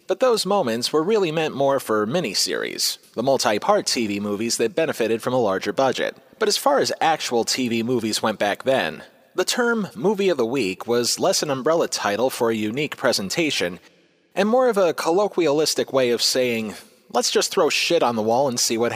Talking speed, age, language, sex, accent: 195 wpm, 30-49, English, male, American